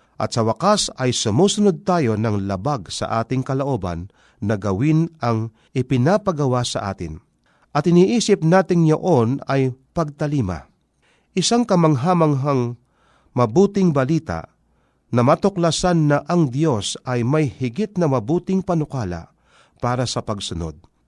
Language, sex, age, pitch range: Filipino, male, 50-69, 120-170 Hz